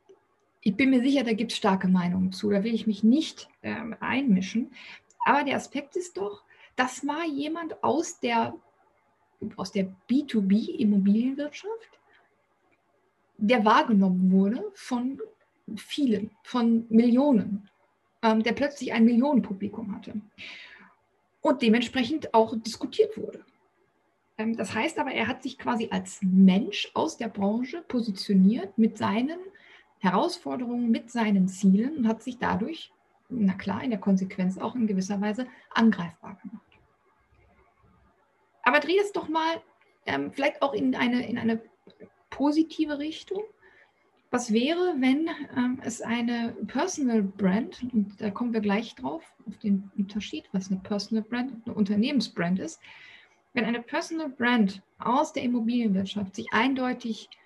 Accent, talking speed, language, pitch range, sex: German, 135 wpm, German, 210-280 Hz, female